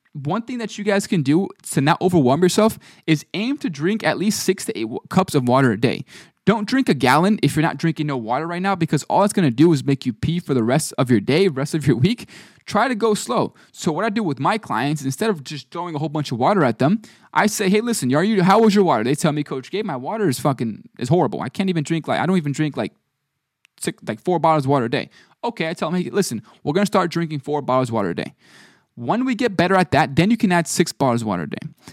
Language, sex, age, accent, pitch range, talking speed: English, male, 20-39, American, 145-205 Hz, 285 wpm